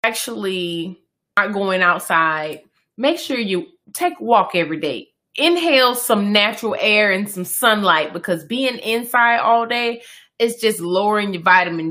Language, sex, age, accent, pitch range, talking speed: English, female, 20-39, American, 185-230 Hz, 145 wpm